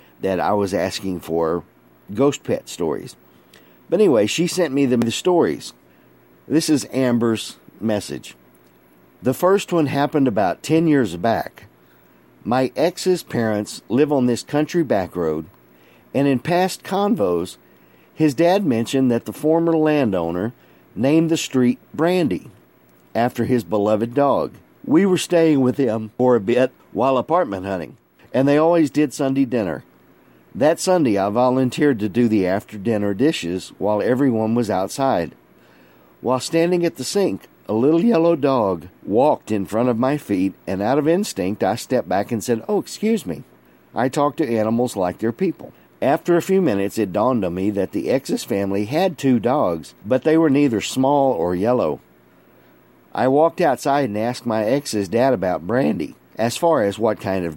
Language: English